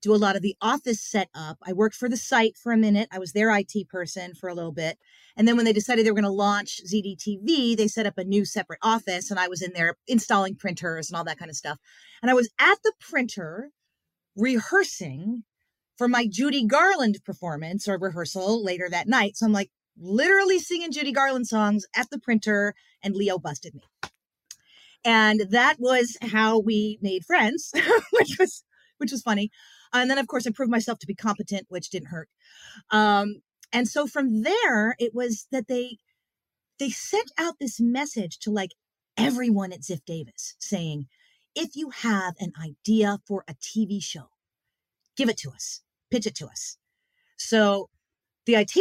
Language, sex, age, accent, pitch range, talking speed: English, female, 40-59, American, 190-250 Hz, 190 wpm